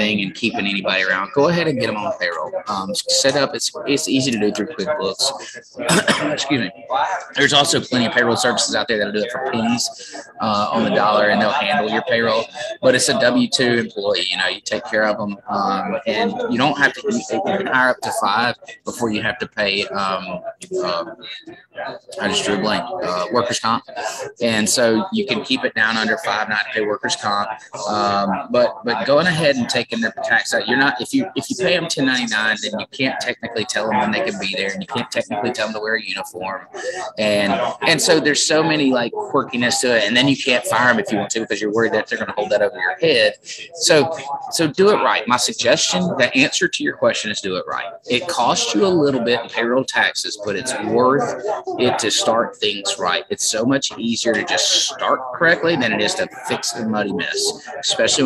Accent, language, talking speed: American, English, 230 wpm